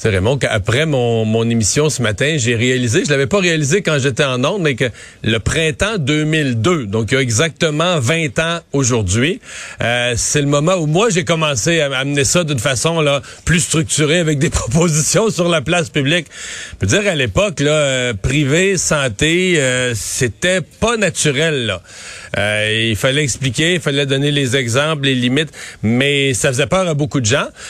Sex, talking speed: male, 190 wpm